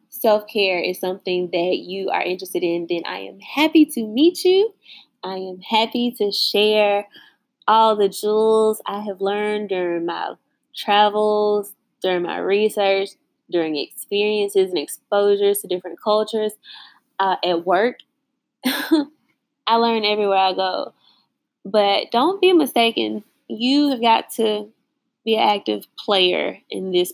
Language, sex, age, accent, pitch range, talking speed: English, female, 10-29, American, 205-275 Hz, 135 wpm